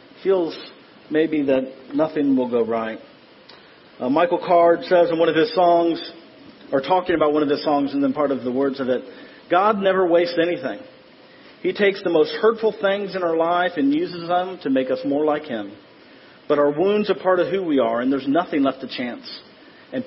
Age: 40-59